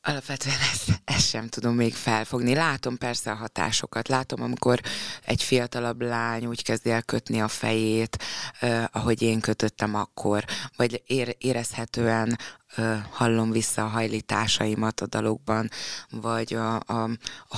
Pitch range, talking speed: 110-120 Hz, 125 wpm